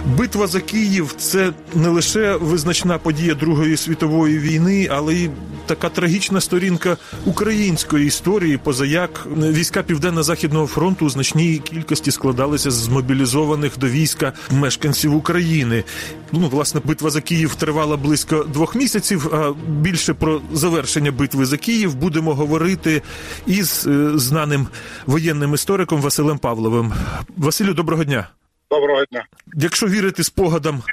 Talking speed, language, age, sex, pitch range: 125 wpm, Ukrainian, 30-49, male, 145-185 Hz